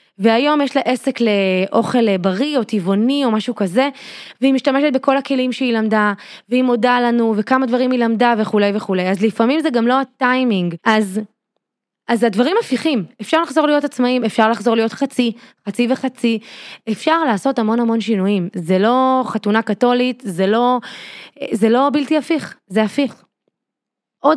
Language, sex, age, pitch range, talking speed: Hebrew, female, 20-39, 205-255 Hz, 160 wpm